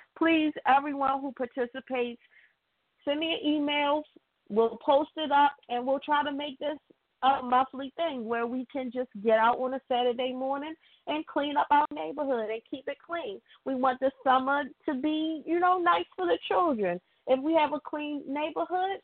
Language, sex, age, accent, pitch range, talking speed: English, female, 30-49, American, 235-300 Hz, 185 wpm